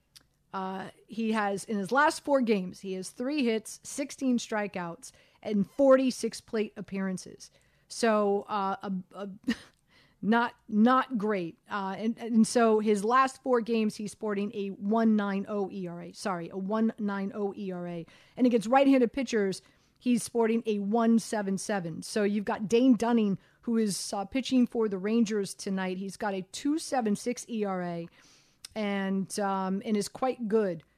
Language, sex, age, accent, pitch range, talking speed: English, female, 40-59, American, 200-260 Hz, 160 wpm